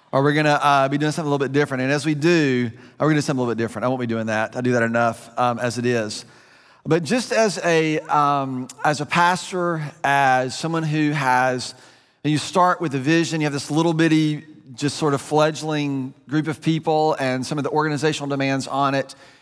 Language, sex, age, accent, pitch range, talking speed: English, male, 30-49, American, 125-150 Hz, 235 wpm